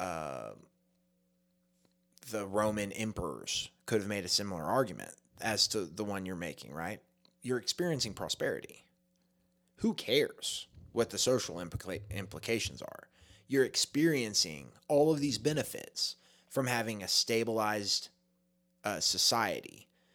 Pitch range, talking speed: 100-125 Hz, 115 wpm